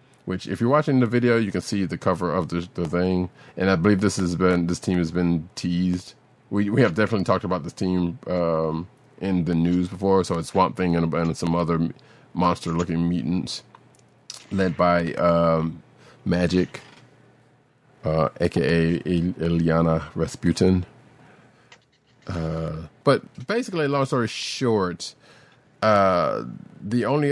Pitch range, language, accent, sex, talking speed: 85-95 Hz, English, American, male, 145 wpm